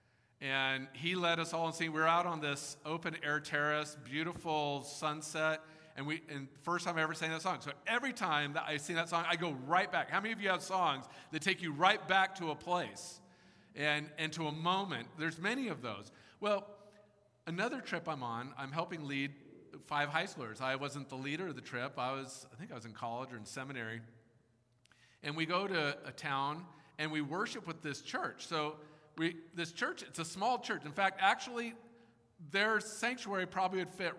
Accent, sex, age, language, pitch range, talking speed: American, male, 50-69, English, 140-180 Hz, 205 wpm